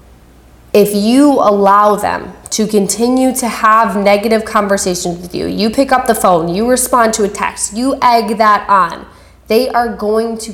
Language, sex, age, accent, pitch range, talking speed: English, female, 20-39, American, 180-225 Hz, 170 wpm